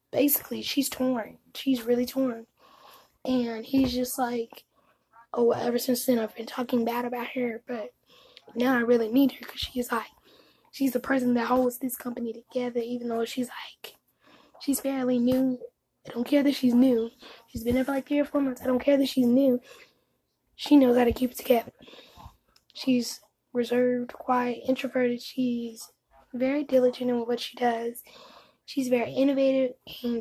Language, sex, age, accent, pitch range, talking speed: English, female, 10-29, American, 240-275 Hz, 175 wpm